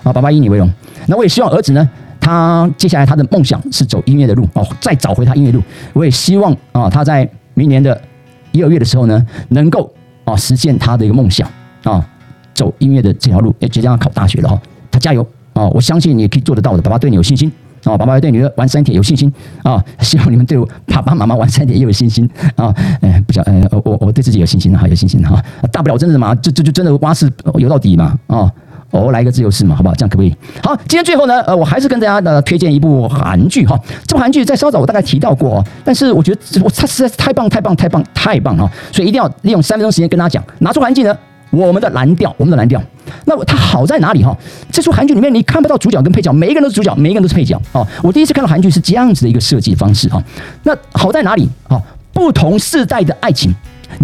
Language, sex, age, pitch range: Chinese, male, 40-59, 120-170 Hz